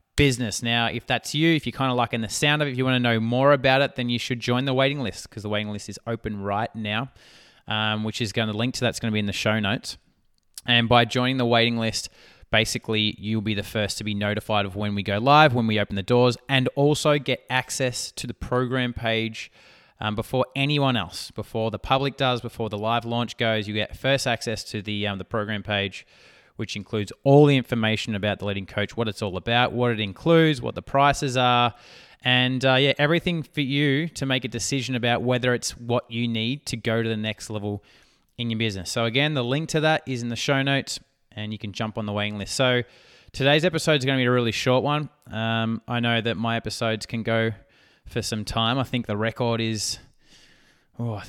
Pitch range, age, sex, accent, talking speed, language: 110-130 Hz, 20-39, male, Australian, 235 wpm, English